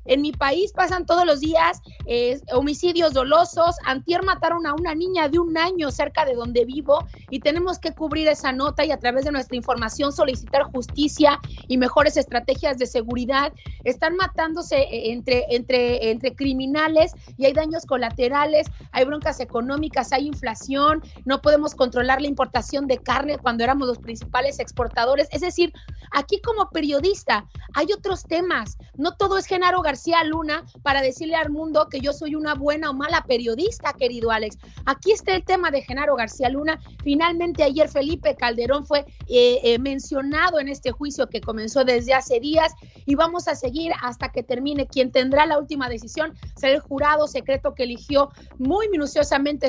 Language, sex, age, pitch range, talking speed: Spanish, female, 30-49, 260-320 Hz, 170 wpm